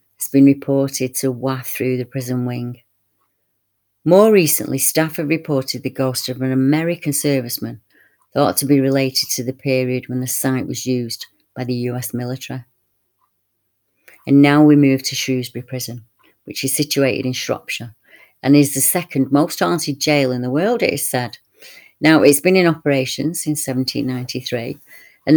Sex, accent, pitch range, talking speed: female, British, 125-145 Hz, 165 wpm